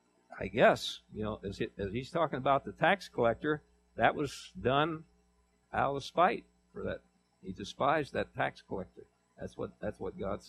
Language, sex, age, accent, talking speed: English, male, 60-79, American, 175 wpm